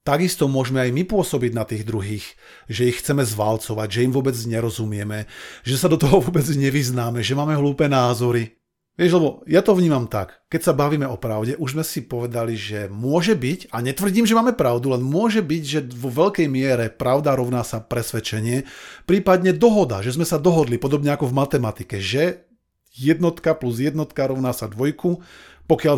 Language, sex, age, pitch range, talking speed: Slovak, male, 40-59, 115-155 Hz, 180 wpm